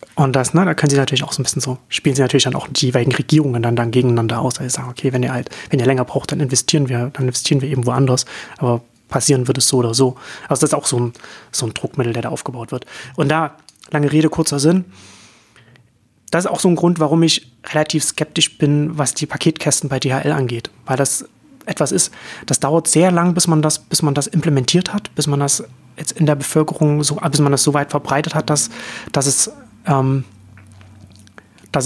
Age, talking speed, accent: 30-49, 230 wpm, German